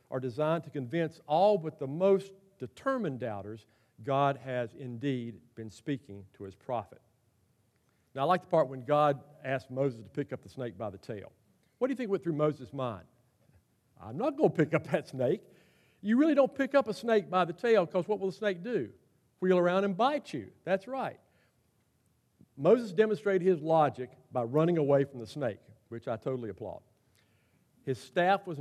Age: 50-69